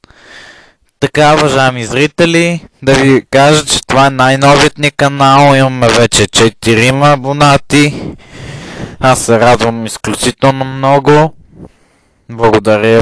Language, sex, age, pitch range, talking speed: Bulgarian, male, 20-39, 120-145 Hz, 95 wpm